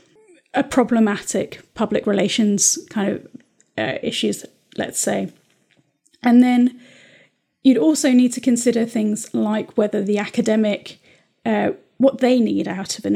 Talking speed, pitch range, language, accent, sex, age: 130 wpm, 210-245 Hz, English, British, female, 30-49